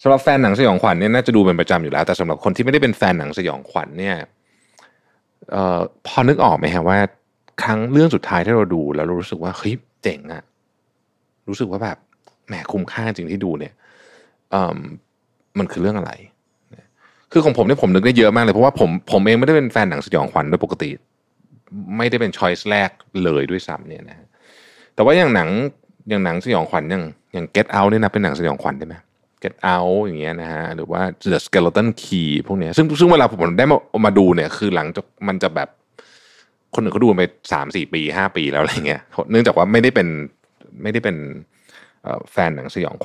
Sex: male